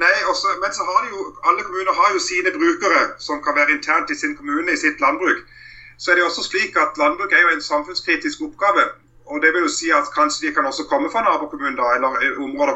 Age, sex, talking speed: 30-49, male, 235 wpm